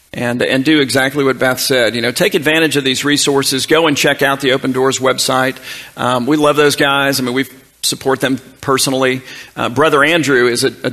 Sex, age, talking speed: male, 50-69, 215 wpm